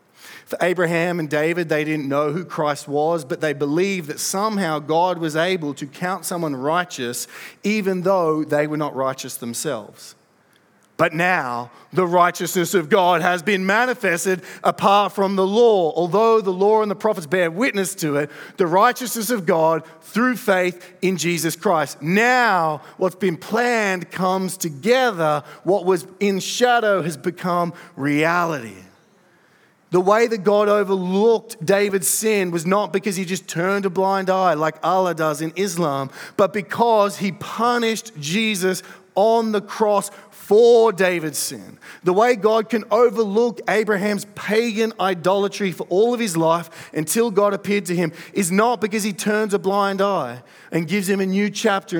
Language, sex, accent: English, male, Australian